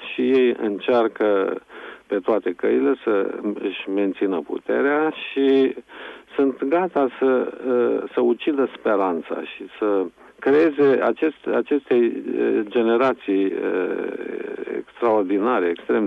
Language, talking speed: Romanian, 95 wpm